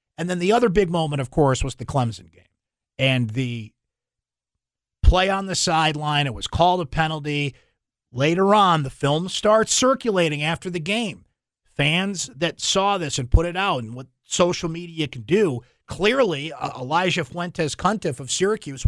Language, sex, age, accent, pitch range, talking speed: English, male, 50-69, American, 125-170 Hz, 170 wpm